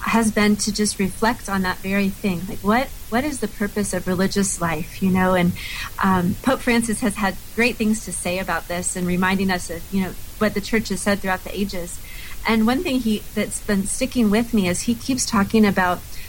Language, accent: English, American